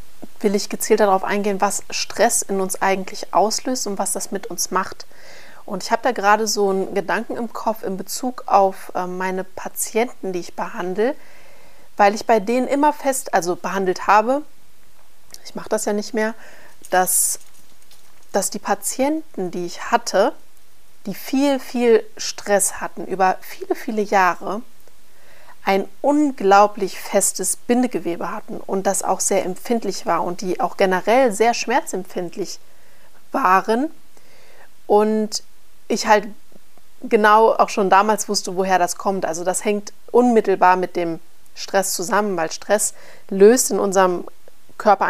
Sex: female